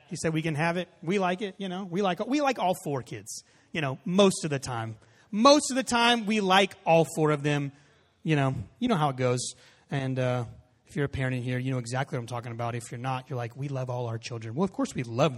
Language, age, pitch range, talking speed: English, 30-49, 130-185 Hz, 275 wpm